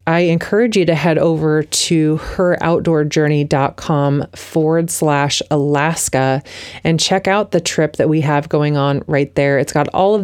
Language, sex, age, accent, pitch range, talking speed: English, female, 30-49, American, 145-170 Hz, 160 wpm